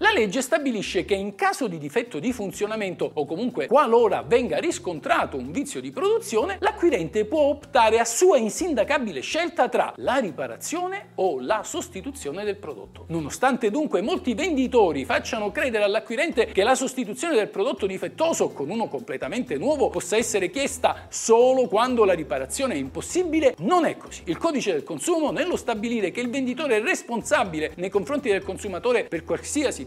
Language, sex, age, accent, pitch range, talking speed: Italian, male, 50-69, native, 205-315 Hz, 160 wpm